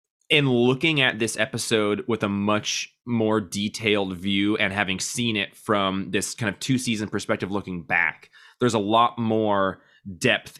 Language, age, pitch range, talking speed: English, 20-39, 100-135 Hz, 165 wpm